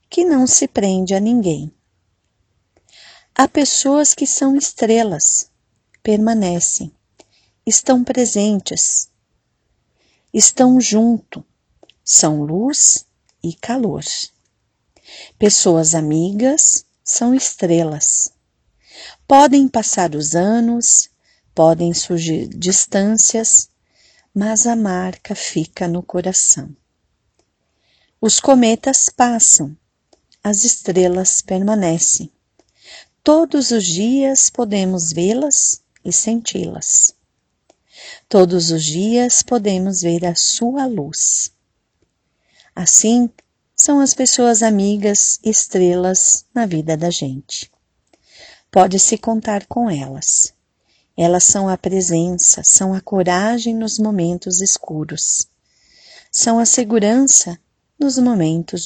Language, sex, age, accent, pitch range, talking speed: Portuguese, female, 40-59, Brazilian, 170-235 Hz, 90 wpm